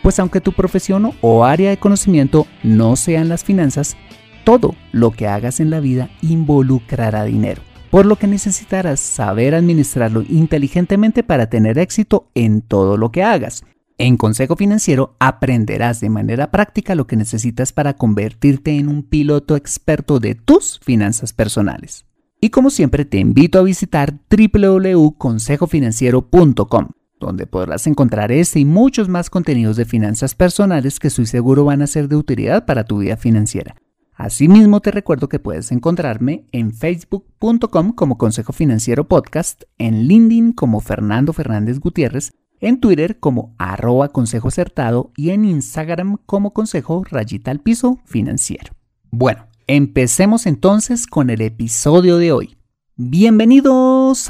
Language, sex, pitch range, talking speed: Spanish, male, 115-185 Hz, 145 wpm